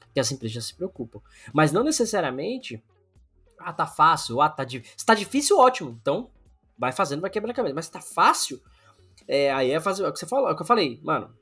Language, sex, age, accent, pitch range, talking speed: Portuguese, male, 20-39, Brazilian, 125-180 Hz, 225 wpm